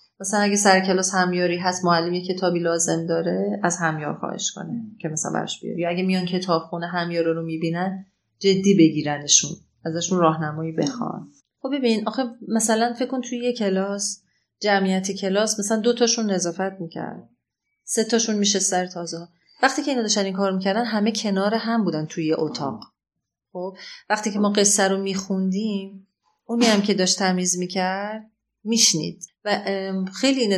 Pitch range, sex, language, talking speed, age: 175-205 Hz, female, Persian, 160 wpm, 30-49